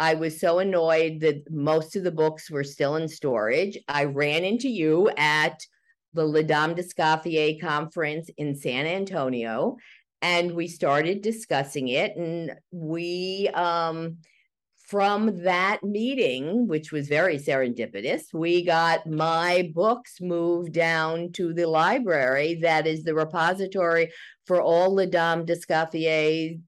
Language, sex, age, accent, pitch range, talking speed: English, female, 50-69, American, 155-175 Hz, 135 wpm